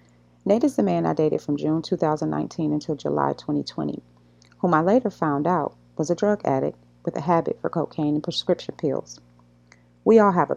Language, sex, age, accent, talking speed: English, female, 30-49, American, 185 wpm